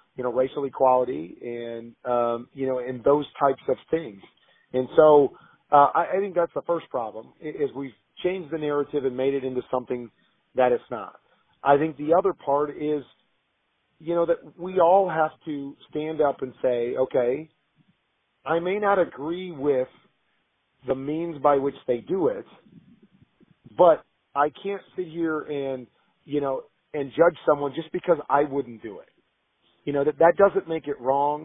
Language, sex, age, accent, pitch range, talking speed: English, male, 40-59, American, 135-170 Hz, 175 wpm